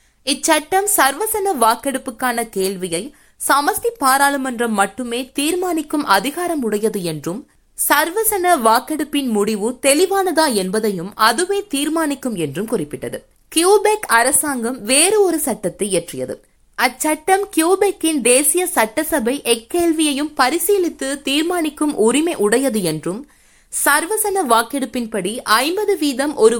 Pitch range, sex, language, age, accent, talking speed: 230-330 Hz, female, Tamil, 20-39, native, 90 wpm